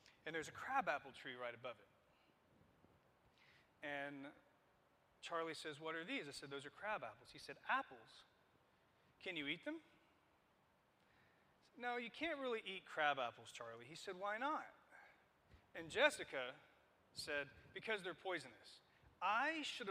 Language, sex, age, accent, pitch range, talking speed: English, male, 40-59, American, 140-205 Hz, 145 wpm